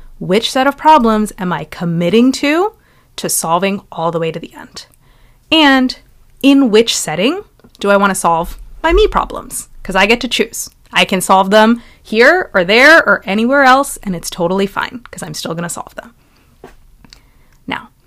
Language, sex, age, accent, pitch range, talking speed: English, female, 30-49, American, 180-255 Hz, 185 wpm